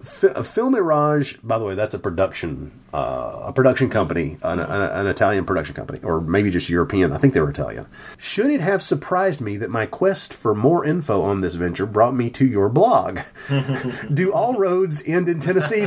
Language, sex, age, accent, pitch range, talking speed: English, male, 40-59, American, 125-170 Hz, 200 wpm